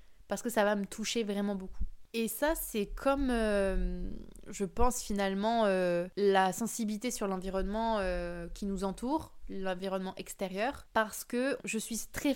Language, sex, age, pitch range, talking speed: French, female, 20-39, 195-225 Hz, 150 wpm